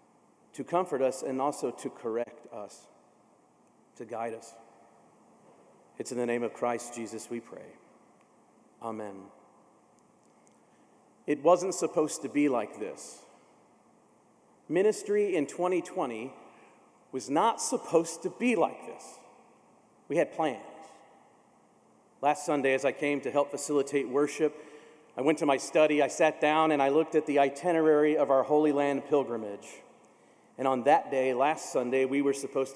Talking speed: 145 wpm